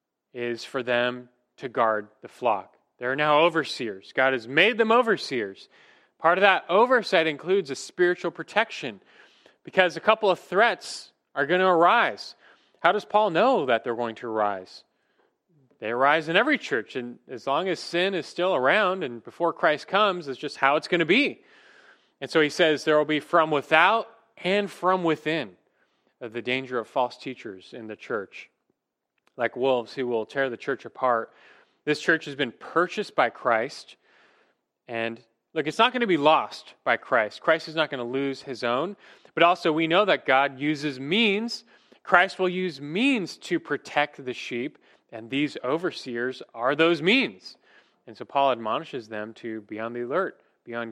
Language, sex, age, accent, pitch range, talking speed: English, male, 30-49, American, 120-180 Hz, 180 wpm